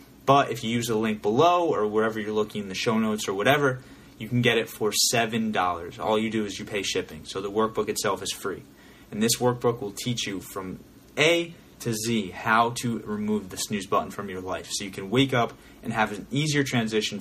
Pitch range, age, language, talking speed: 105-130 Hz, 20-39, English, 225 wpm